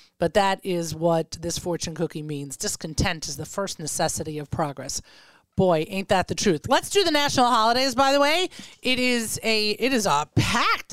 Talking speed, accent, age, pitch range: 190 wpm, American, 30-49, 180-265 Hz